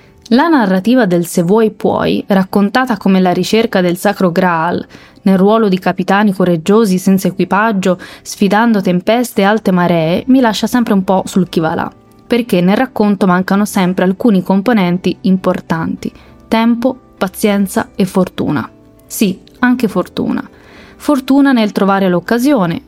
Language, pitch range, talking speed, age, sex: Italian, 185-245 Hz, 135 wpm, 20-39, female